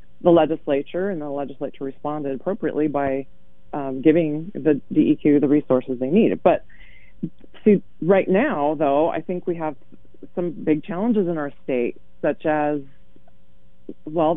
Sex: female